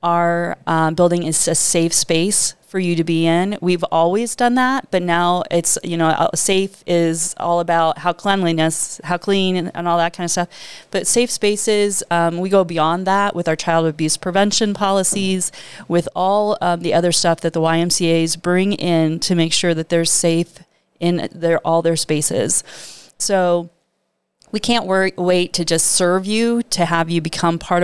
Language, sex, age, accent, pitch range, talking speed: English, female, 30-49, American, 165-190 Hz, 185 wpm